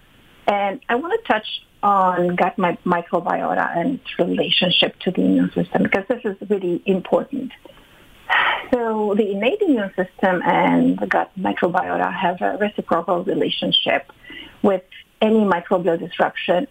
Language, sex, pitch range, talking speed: English, female, 175-220 Hz, 135 wpm